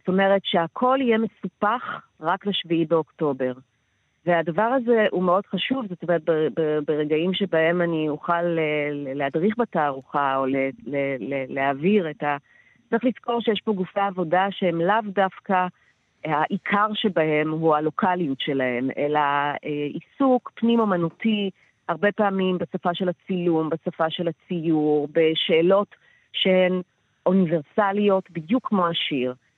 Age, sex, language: 40-59, female, Hebrew